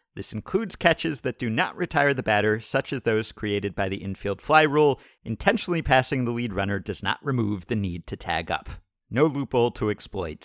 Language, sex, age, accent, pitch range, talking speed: English, male, 50-69, American, 110-155 Hz, 200 wpm